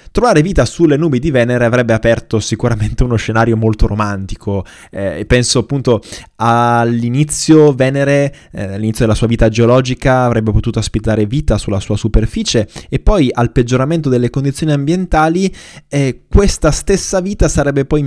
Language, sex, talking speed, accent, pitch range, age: Italian, male, 145 wpm, native, 105-125 Hz, 20-39